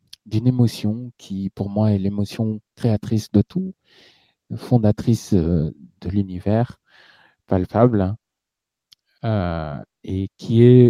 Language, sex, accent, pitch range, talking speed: French, male, French, 100-120 Hz, 105 wpm